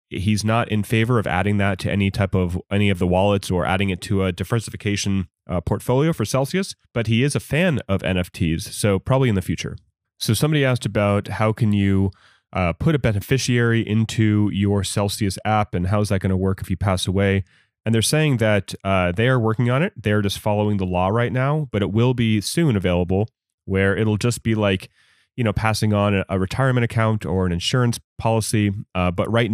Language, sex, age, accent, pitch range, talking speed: English, male, 30-49, American, 95-120 Hz, 210 wpm